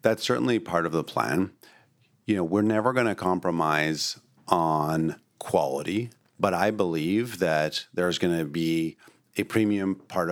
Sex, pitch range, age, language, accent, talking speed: male, 90-110 Hz, 40-59, English, American, 150 wpm